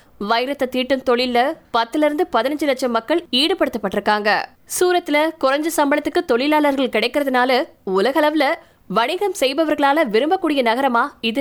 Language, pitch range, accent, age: Tamil, 235-310 Hz, native, 20-39